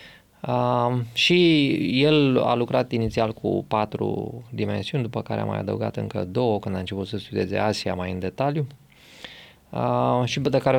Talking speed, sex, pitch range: 160 wpm, male, 100-130 Hz